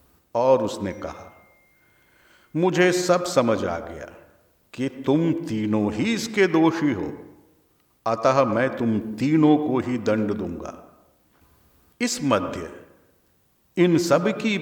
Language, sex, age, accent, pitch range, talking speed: Hindi, male, 50-69, native, 100-150 Hz, 110 wpm